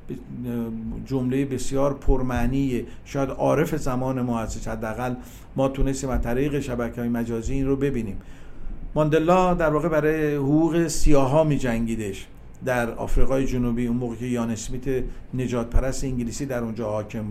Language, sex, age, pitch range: Persian, male, 50-69, 120-150 Hz